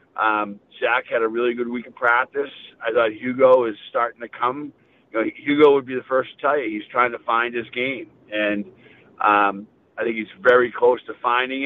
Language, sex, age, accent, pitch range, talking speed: English, male, 50-69, American, 115-140 Hz, 210 wpm